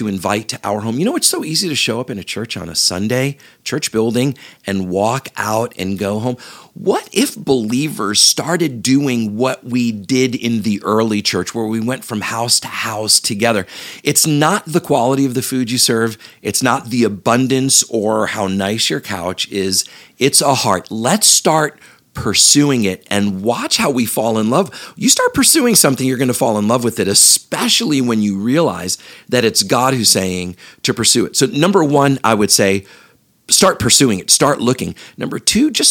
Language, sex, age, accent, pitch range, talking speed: English, male, 40-59, American, 110-145 Hz, 195 wpm